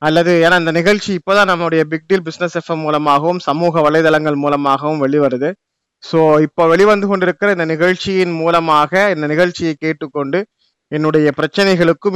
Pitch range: 155-195 Hz